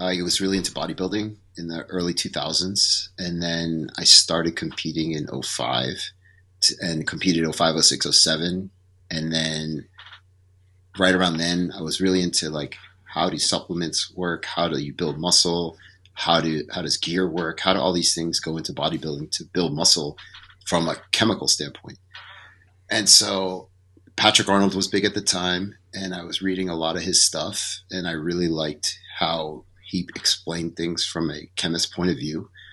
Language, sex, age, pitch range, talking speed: English, male, 30-49, 85-95 Hz, 175 wpm